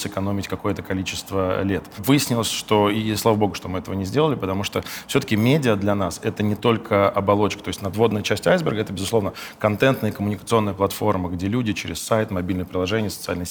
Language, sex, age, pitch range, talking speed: Russian, male, 20-39, 95-110 Hz, 185 wpm